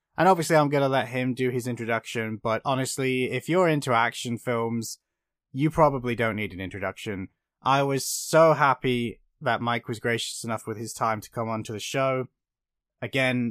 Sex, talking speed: male, 180 wpm